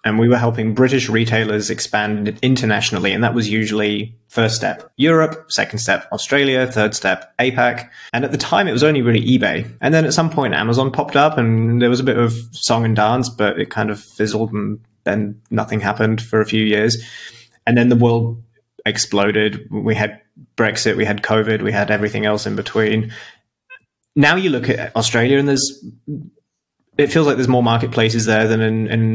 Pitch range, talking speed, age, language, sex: 110-120 Hz, 195 wpm, 20-39, English, male